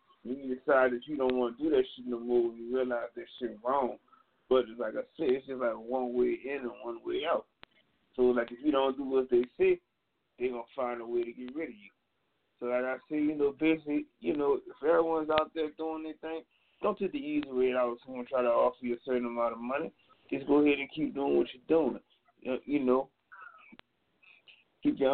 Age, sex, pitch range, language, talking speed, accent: 30-49, male, 120-140 Hz, English, 230 wpm, American